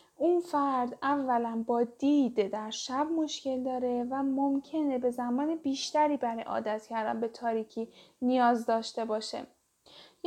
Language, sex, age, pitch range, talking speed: Persian, female, 10-29, 230-275 Hz, 135 wpm